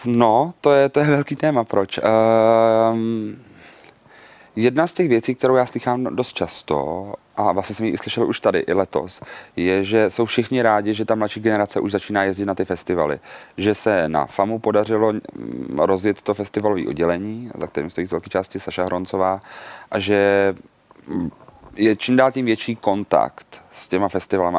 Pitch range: 100-115 Hz